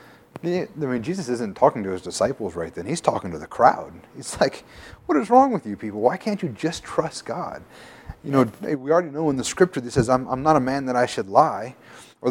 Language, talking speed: English, 240 wpm